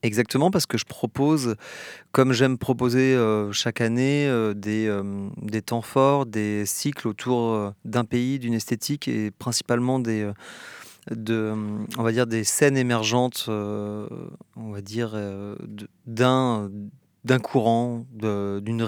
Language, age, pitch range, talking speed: French, 30-49, 100-120 Hz, 125 wpm